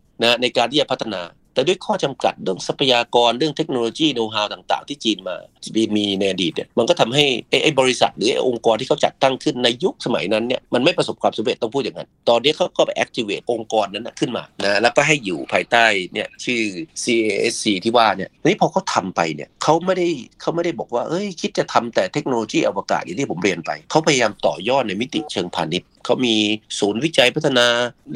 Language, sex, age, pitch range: Thai, male, 30-49, 110-155 Hz